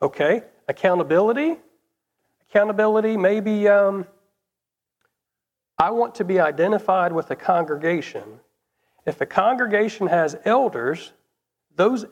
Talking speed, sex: 95 wpm, male